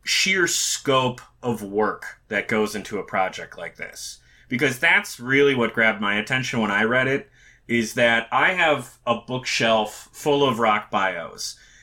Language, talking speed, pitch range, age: English, 160 wpm, 110-135 Hz, 30-49